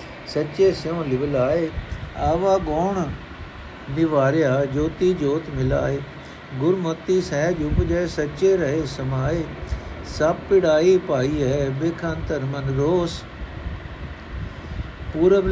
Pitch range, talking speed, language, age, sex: 135-175 Hz, 105 wpm, Punjabi, 60-79, male